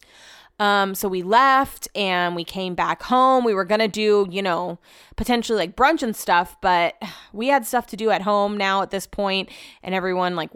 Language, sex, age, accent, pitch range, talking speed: English, female, 20-39, American, 180-225 Hz, 205 wpm